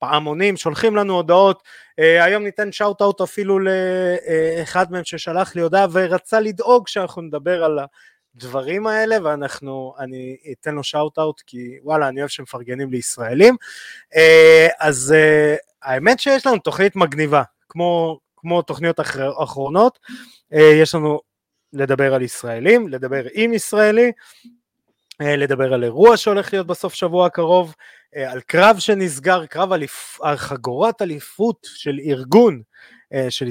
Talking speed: 135 wpm